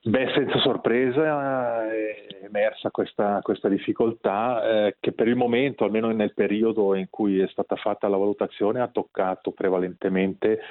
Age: 30-49